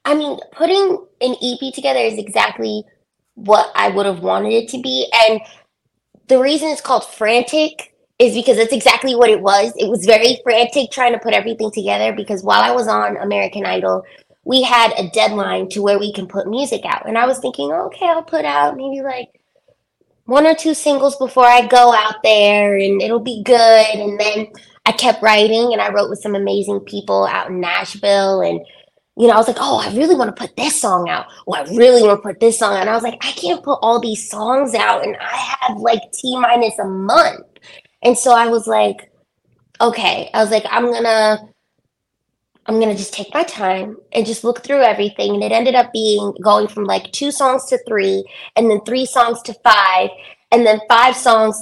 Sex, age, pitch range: female, 20-39, 205-250 Hz